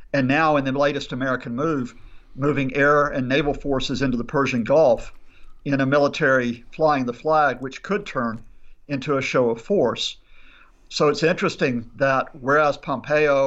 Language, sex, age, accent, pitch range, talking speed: English, male, 50-69, American, 125-150 Hz, 160 wpm